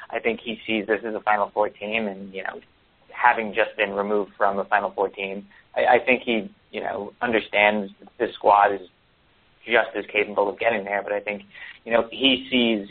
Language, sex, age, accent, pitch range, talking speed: English, male, 30-49, American, 100-120 Hz, 215 wpm